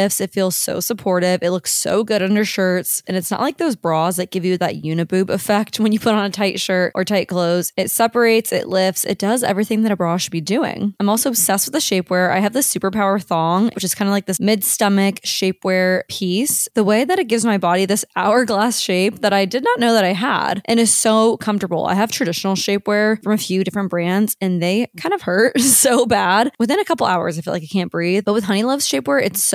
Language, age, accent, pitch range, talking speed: English, 20-39, American, 185-225 Hz, 245 wpm